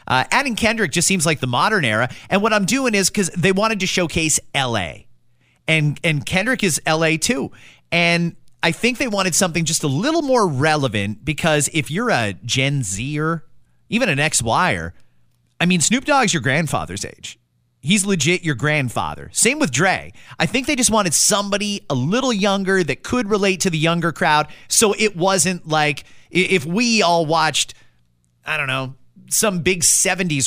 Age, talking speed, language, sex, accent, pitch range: 30-49, 175 wpm, English, male, American, 135-200 Hz